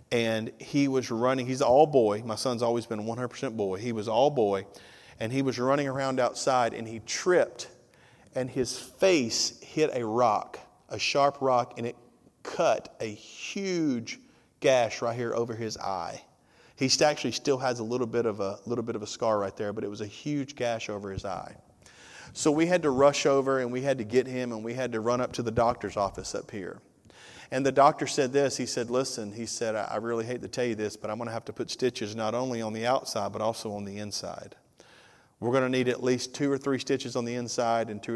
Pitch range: 110-130 Hz